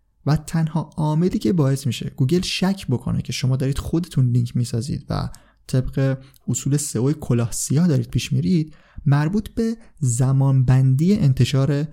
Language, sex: Persian, male